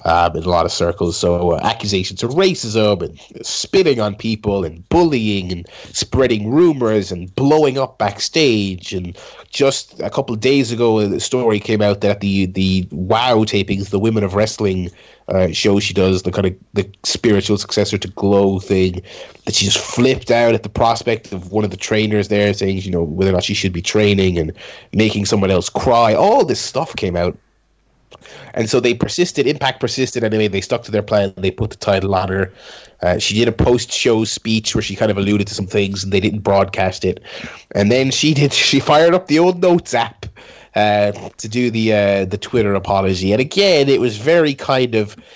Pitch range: 100-125 Hz